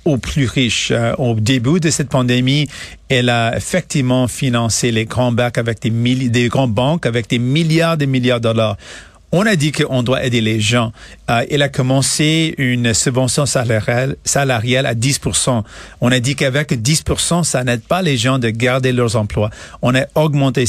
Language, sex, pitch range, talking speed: French, male, 120-145 Hz, 195 wpm